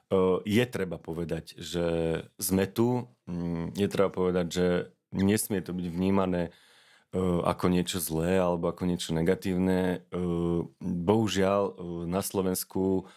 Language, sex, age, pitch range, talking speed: Slovak, male, 30-49, 85-95 Hz, 110 wpm